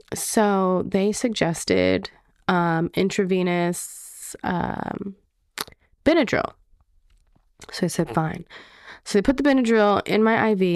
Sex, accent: female, American